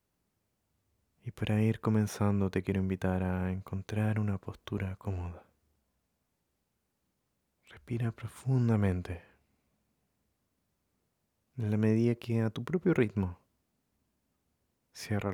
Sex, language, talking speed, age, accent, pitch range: male, Spanish, 90 wpm, 30-49, Argentinian, 95-110 Hz